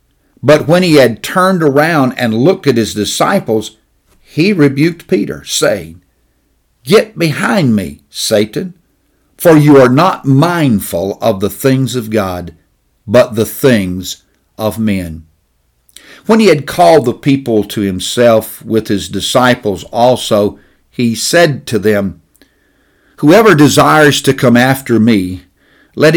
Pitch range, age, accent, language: 100-145 Hz, 50-69, American, English